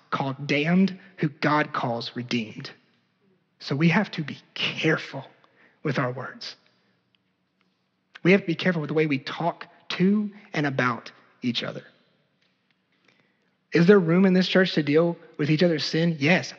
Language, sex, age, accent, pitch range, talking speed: English, male, 30-49, American, 155-200 Hz, 155 wpm